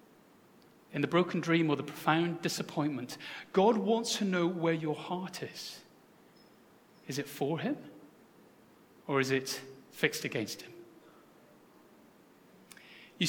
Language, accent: English, British